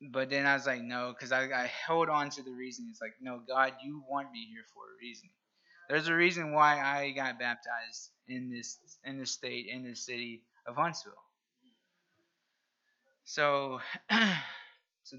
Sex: male